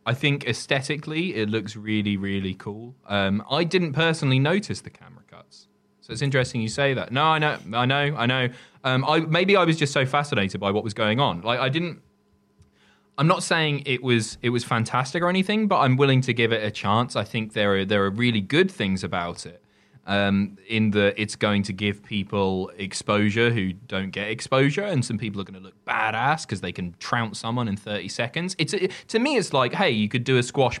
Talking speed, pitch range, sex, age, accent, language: 225 wpm, 105-145 Hz, male, 20-39, British, English